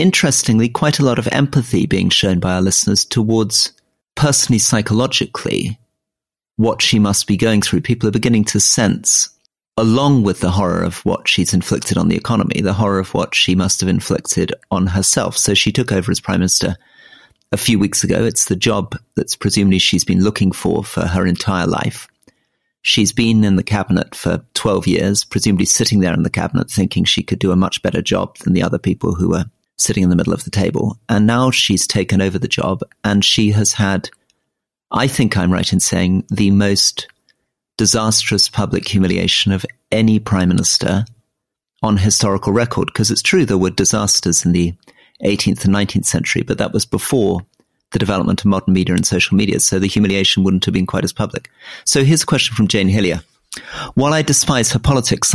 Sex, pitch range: male, 95-115 Hz